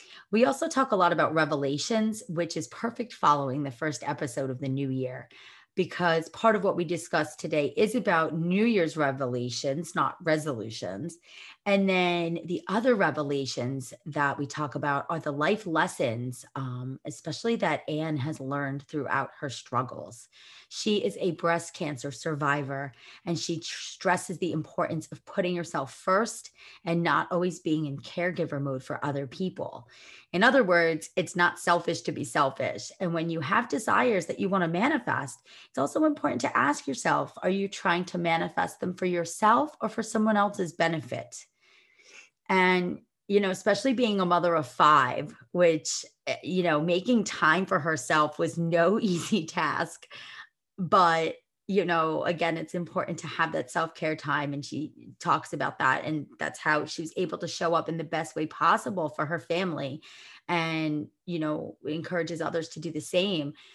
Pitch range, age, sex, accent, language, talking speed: 150-180 Hz, 30-49, female, American, English, 170 wpm